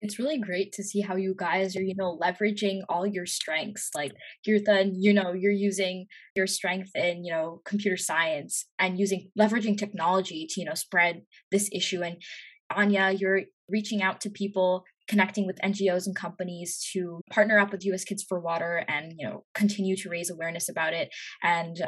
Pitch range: 185-215 Hz